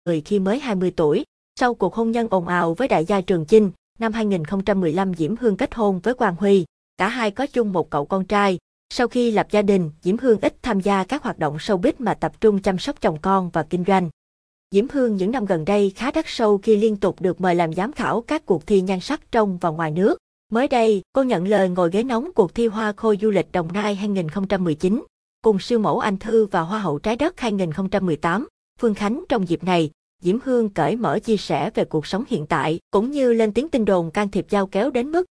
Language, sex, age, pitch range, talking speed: Vietnamese, female, 20-39, 185-225 Hz, 240 wpm